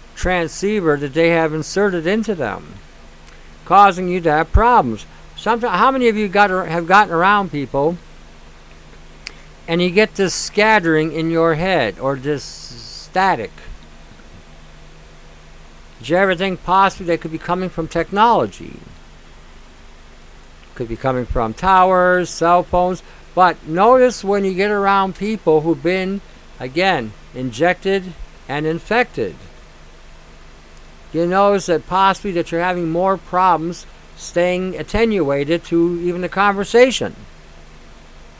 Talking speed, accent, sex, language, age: 125 wpm, American, male, English, 60-79